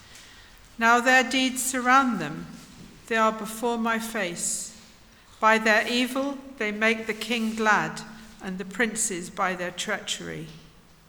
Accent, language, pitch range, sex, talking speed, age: British, English, 185-240 Hz, female, 130 wpm, 60-79